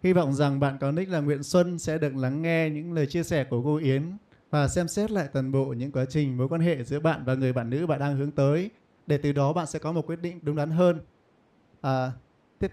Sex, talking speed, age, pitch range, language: male, 265 wpm, 20-39, 135-170 Hz, Vietnamese